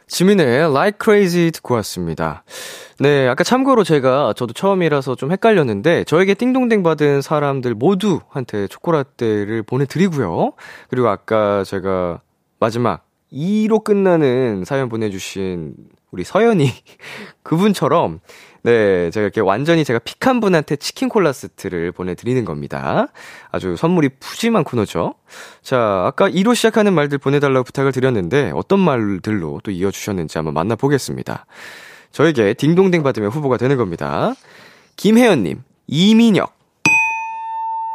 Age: 20-39